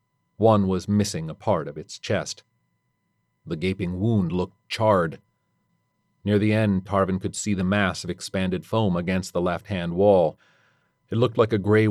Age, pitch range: 40-59, 90-110 Hz